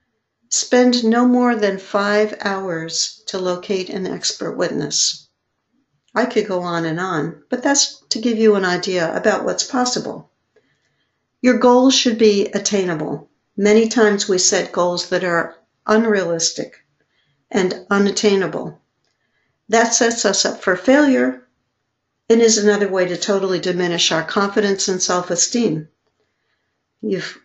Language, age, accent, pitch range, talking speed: English, 60-79, American, 185-225 Hz, 130 wpm